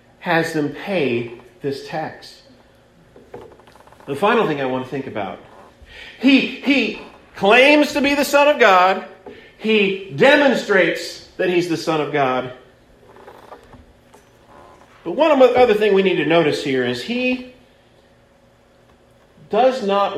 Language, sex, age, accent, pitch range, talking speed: English, male, 40-59, American, 135-195 Hz, 130 wpm